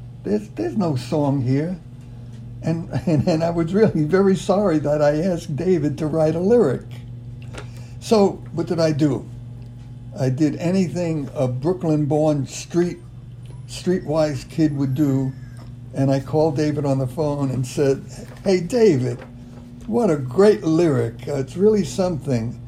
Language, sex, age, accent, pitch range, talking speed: English, male, 60-79, American, 125-165 Hz, 150 wpm